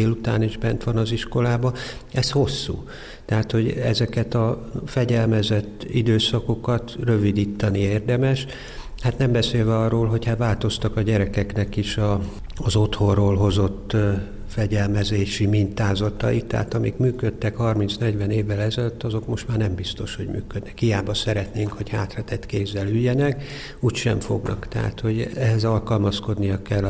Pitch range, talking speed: 105-125 Hz, 125 wpm